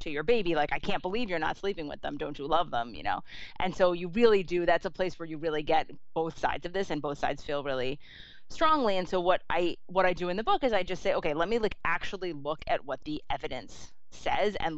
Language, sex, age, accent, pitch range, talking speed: English, female, 30-49, American, 155-205 Hz, 270 wpm